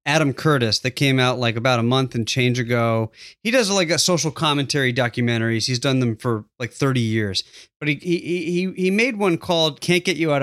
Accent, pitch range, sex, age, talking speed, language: American, 125-165 Hz, male, 30-49, 220 wpm, English